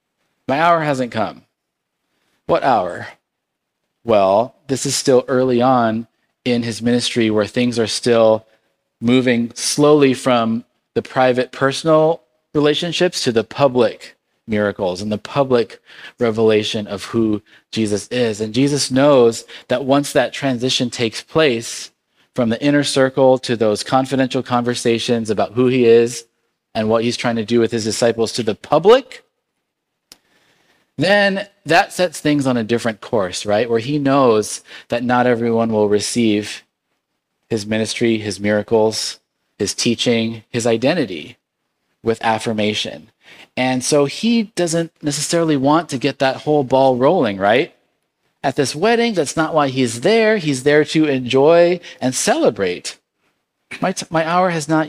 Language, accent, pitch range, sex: English, American, 115-145 Hz, male